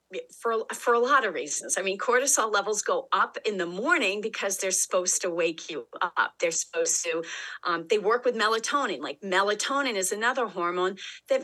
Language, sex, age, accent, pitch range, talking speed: English, female, 40-59, American, 185-255 Hz, 190 wpm